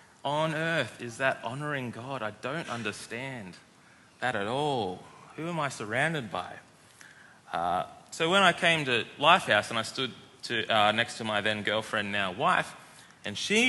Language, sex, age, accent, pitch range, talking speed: English, male, 20-39, Australian, 105-145 Hz, 160 wpm